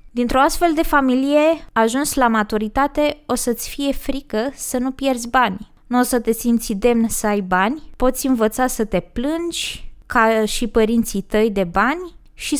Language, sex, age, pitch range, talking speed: Romanian, female, 20-39, 220-275 Hz, 170 wpm